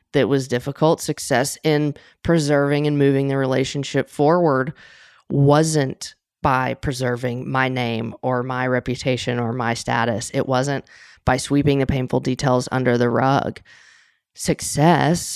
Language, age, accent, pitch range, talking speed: English, 20-39, American, 130-155 Hz, 130 wpm